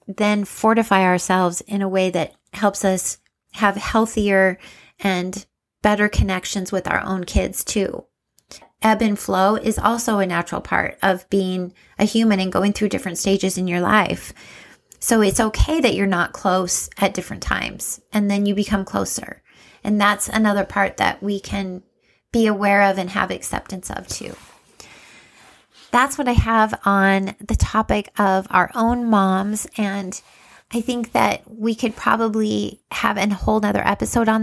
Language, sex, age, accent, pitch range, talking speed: English, female, 30-49, American, 190-225 Hz, 160 wpm